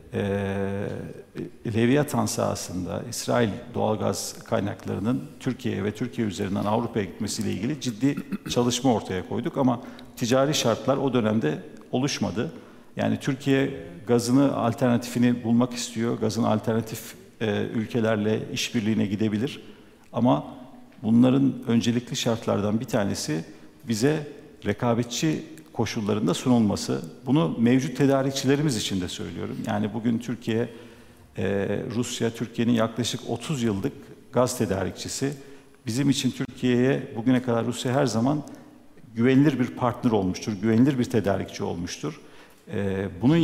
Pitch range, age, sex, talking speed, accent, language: 105-130 Hz, 50-69, male, 105 wpm, native, Turkish